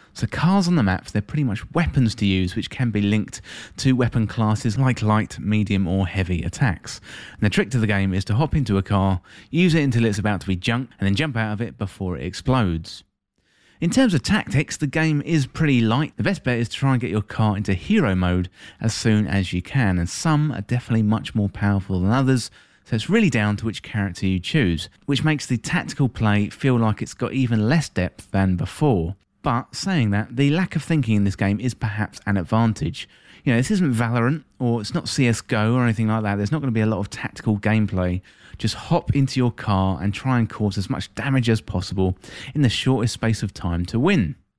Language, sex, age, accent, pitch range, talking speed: English, male, 30-49, British, 100-130 Hz, 230 wpm